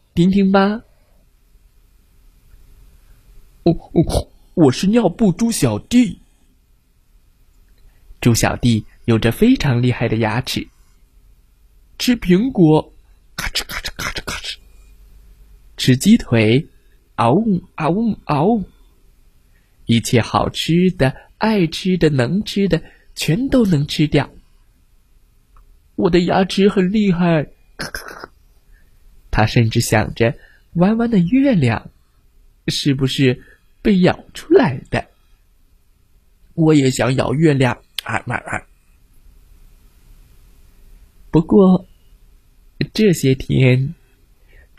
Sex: male